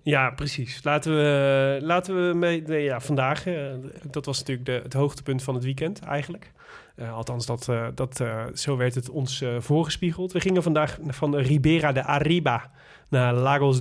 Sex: male